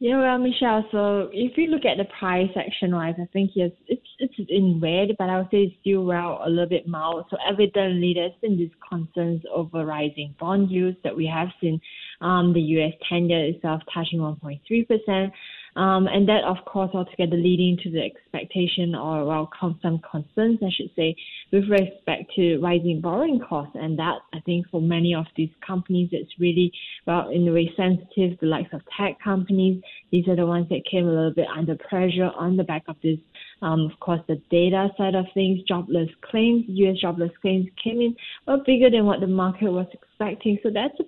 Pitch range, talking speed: 170-195 Hz, 205 wpm